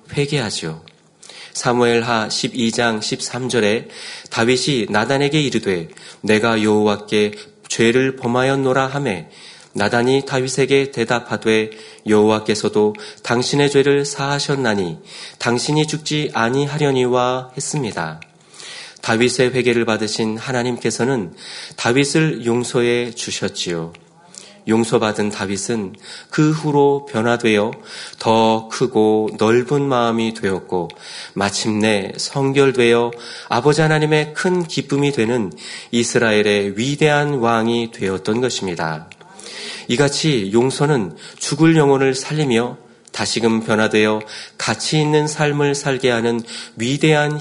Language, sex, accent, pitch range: Korean, male, native, 110-140 Hz